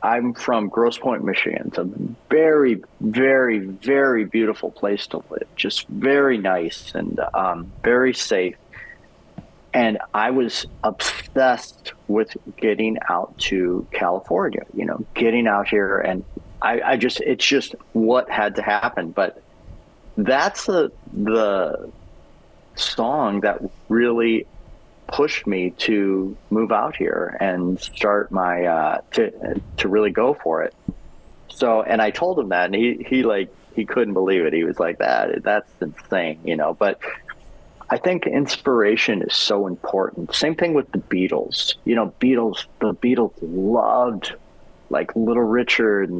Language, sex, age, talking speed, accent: English, male, 40-59, 150 wpm, American